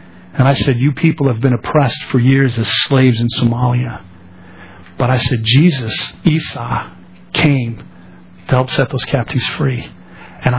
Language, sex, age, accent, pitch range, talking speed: English, male, 50-69, American, 115-145 Hz, 155 wpm